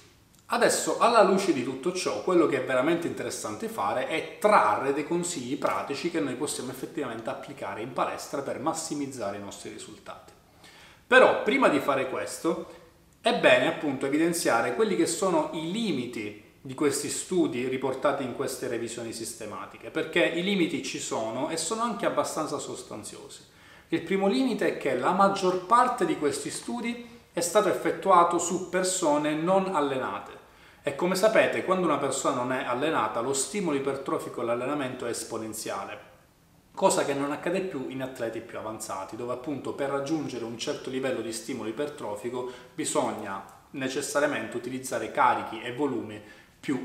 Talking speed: 155 wpm